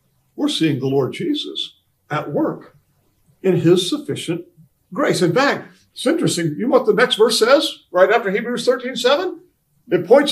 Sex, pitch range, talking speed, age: male, 140-195 Hz, 170 wpm, 50-69